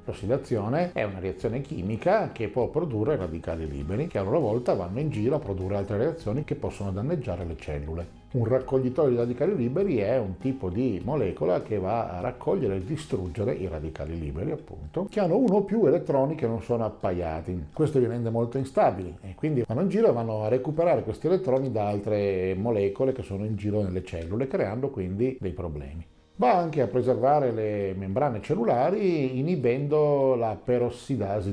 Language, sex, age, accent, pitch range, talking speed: Italian, male, 50-69, native, 100-130 Hz, 180 wpm